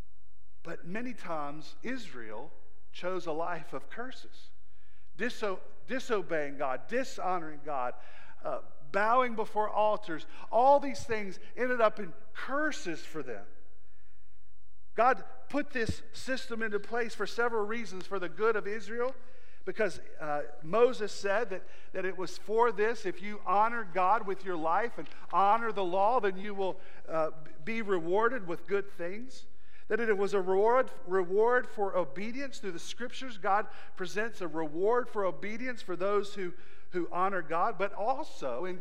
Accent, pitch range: American, 150-225 Hz